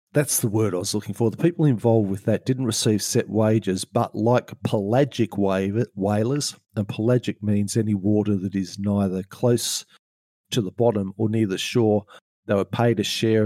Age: 50-69